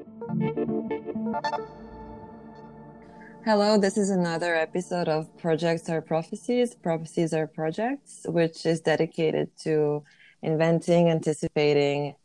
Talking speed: 90 wpm